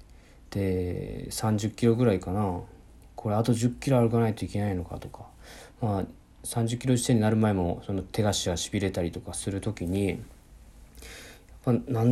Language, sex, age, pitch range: Japanese, male, 40-59, 90-120 Hz